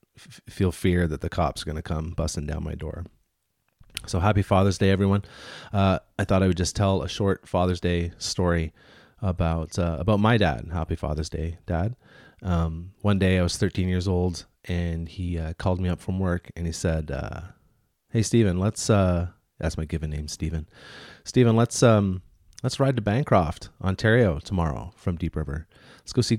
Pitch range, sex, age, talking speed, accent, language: 85-100 Hz, male, 30-49, 190 wpm, American, English